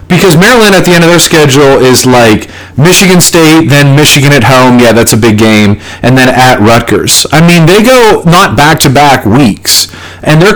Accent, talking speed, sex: American, 195 wpm, male